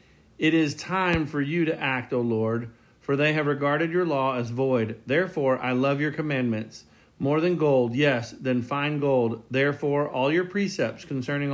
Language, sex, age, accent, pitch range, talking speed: English, male, 40-59, American, 125-155 Hz, 175 wpm